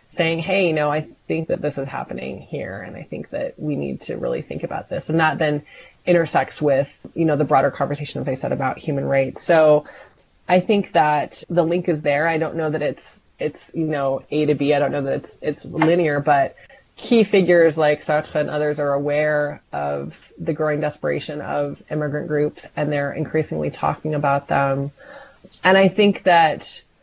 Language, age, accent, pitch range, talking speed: English, 20-39, American, 140-165 Hz, 200 wpm